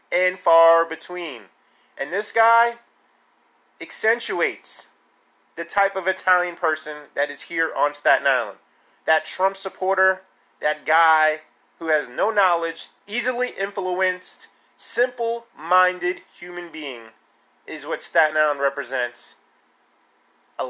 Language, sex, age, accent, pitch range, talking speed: English, male, 30-49, American, 155-205 Hz, 115 wpm